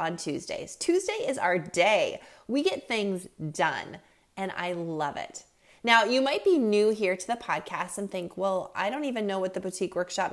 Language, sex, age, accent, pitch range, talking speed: English, female, 20-39, American, 185-245 Hz, 200 wpm